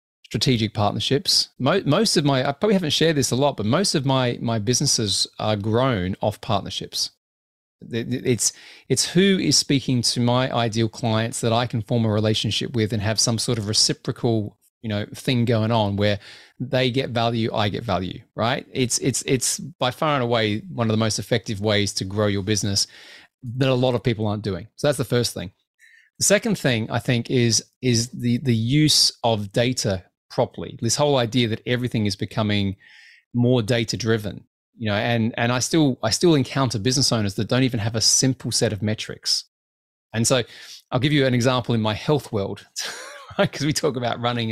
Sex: male